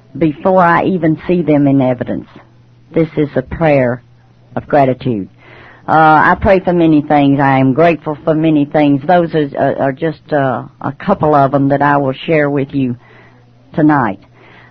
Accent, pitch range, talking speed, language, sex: American, 140-195 Hz, 165 wpm, English, female